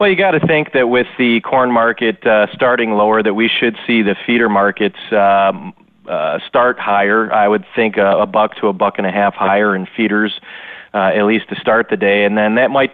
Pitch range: 100-110 Hz